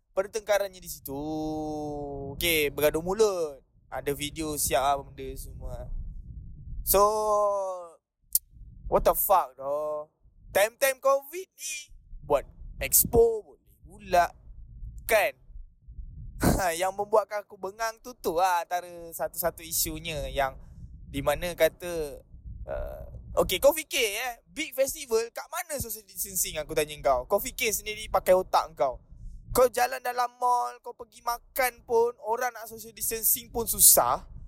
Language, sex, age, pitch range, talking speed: Malay, male, 20-39, 150-230 Hz, 125 wpm